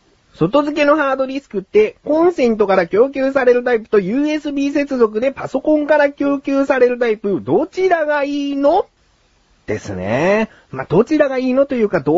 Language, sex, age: Japanese, male, 40-59